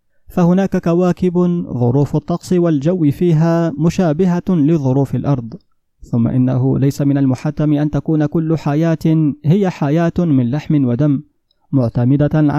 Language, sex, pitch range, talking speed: Arabic, male, 135-155 Hz, 115 wpm